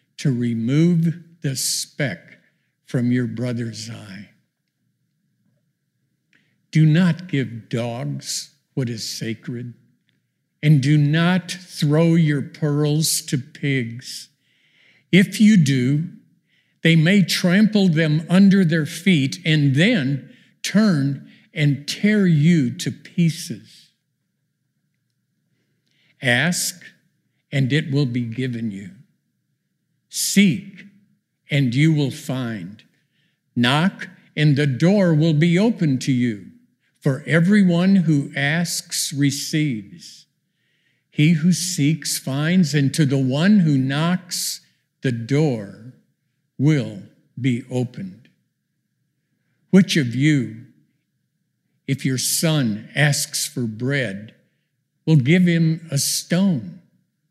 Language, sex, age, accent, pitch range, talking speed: English, male, 50-69, American, 135-170 Hz, 100 wpm